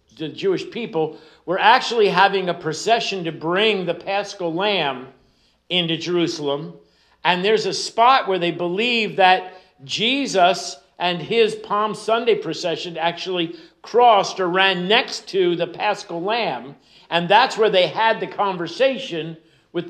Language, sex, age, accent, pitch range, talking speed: English, male, 50-69, American, 170-220 Hz, 140 wpm